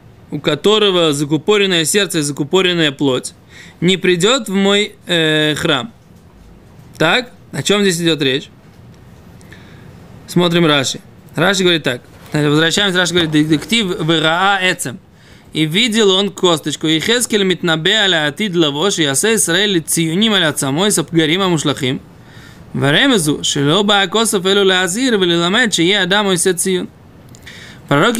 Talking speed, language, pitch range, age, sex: 105 wpm, Russian, 160-200 Hz, 20-39, male